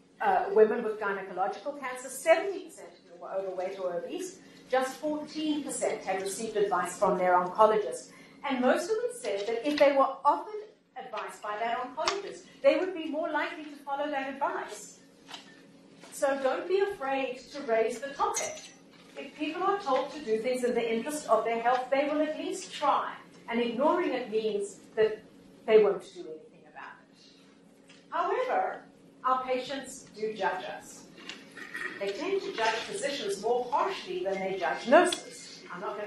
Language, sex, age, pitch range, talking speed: English, female, 50-69, 215-300 Hz, 165 wpm